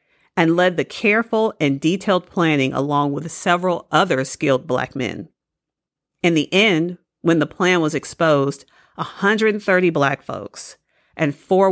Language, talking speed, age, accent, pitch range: English, 140 wpm, 40-59, American, 150-190 Hz